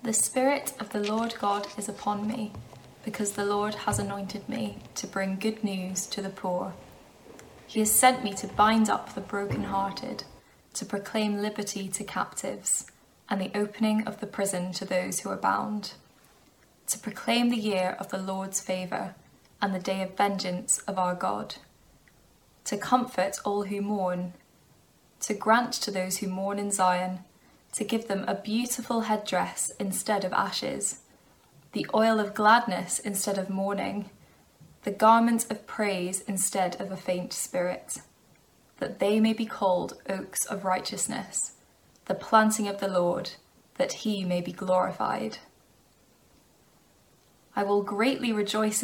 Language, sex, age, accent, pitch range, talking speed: English, female, 10-29, British, 190-215 Hz, 150 wpm